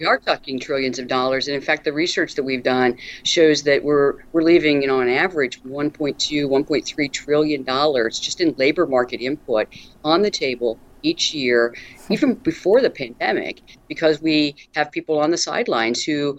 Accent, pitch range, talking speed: American, 130-170 Hz, 180 wpm